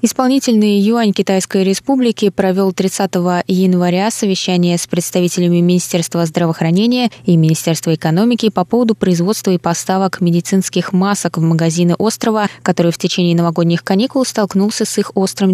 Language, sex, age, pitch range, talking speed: Russian, female, 20-39, 170-205 Hz, 130 wpm